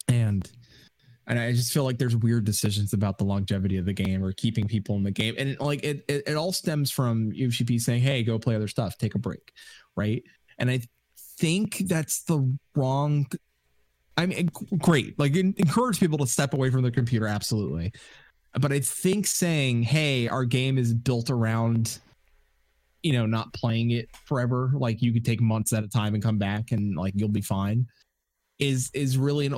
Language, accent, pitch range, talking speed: English, American, 105-140 Hz, 200 wpm